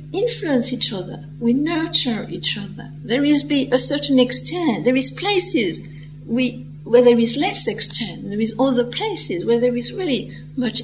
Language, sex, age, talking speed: English, female, 60-79, 170 wpm